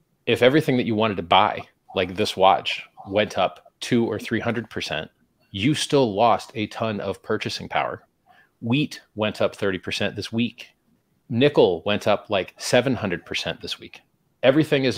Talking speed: 150 wpm